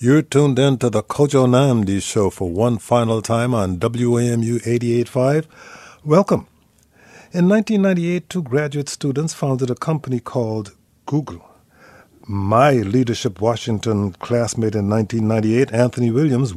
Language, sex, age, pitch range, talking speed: English, male, 50-69, 115-145 Hz, 125 wpm